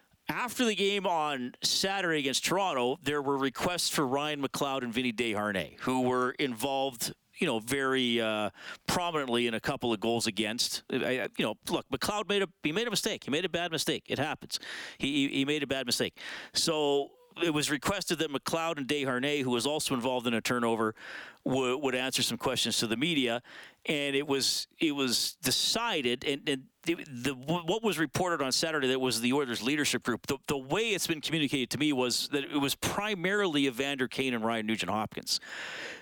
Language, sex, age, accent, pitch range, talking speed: English, male, 40-59, American, 115-145 Hz, 195 wpm